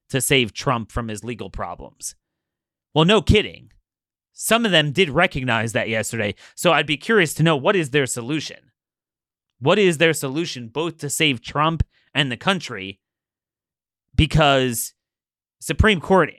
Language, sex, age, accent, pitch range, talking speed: English, male, 30-49, American, 120-160 Hz, 150 wpm